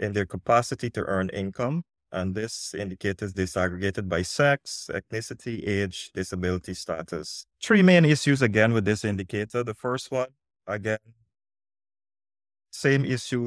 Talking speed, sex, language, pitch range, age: 135 wpm, male, English, 95-120 Hz, 20-39